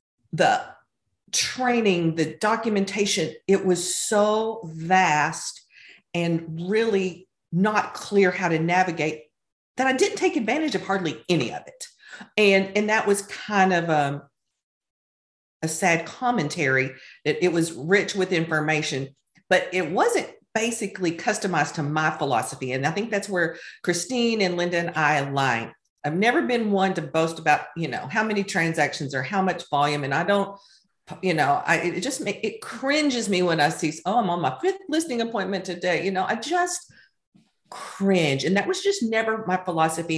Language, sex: English, female